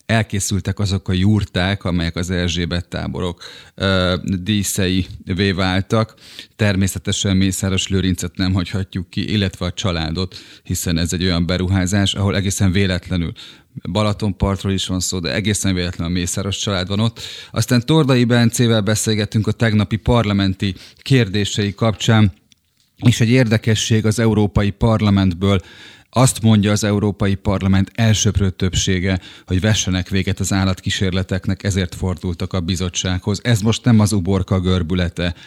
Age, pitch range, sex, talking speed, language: 30-49, 90-105 Hz, male, 130 wpm, Hungarian